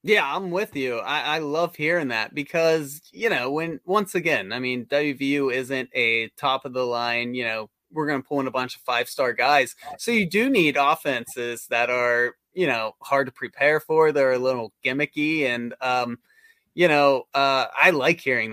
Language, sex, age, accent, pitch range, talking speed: English, male, 30-49, American, 125-145 Hz, 200 wpm